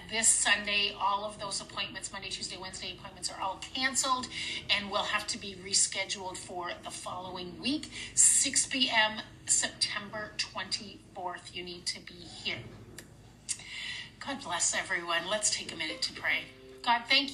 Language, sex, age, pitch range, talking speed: English, female, 30-49, 185-245 Hz, 150 wpm